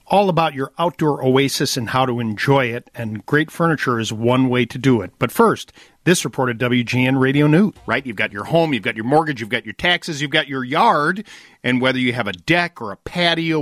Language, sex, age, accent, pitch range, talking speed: English, male, 50-69, American, 120-155 Hz, 235 wpm